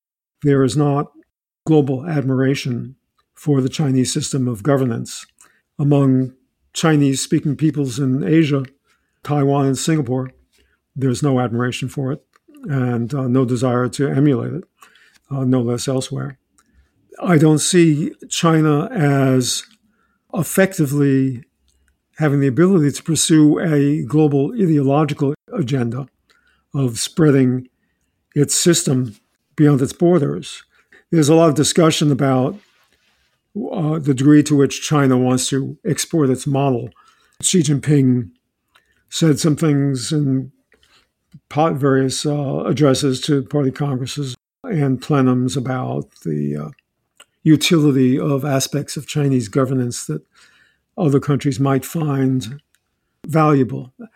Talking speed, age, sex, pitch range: 115 wpm, 50-69, male, 130-155 Hz